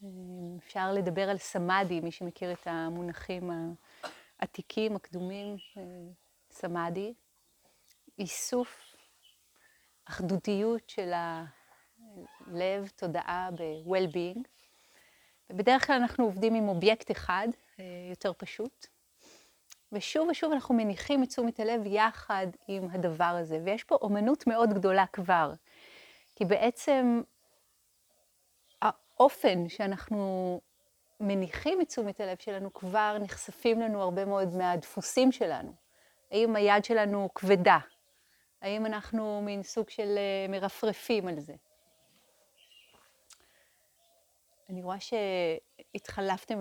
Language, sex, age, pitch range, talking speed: Hebrew, female, 30-49, 185-240 Hz, 95 wpm